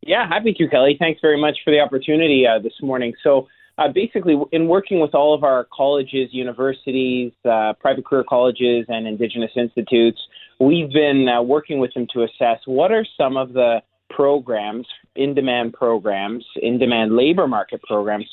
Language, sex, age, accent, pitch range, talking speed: English, male, 30-49, American, 115-140 Hz, 165 wpm